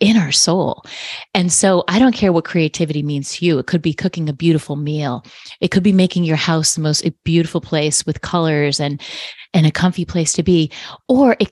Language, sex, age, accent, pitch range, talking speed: English, female, 30-49, American, 155-195 Hz, 215 wpm